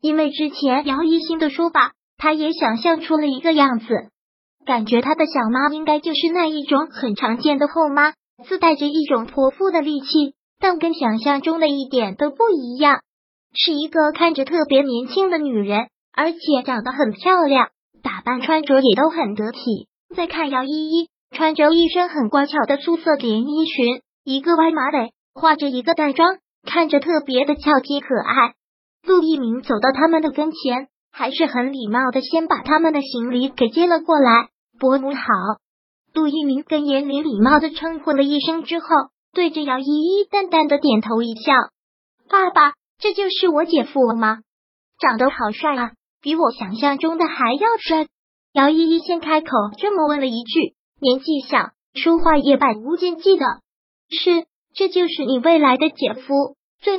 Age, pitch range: 20-39, 265-325 Hz